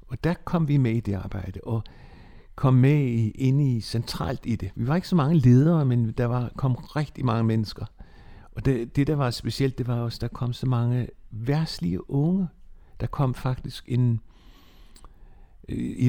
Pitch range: 110-145 Hz